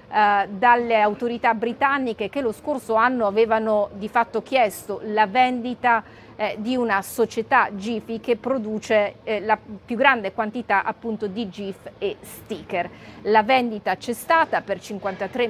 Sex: female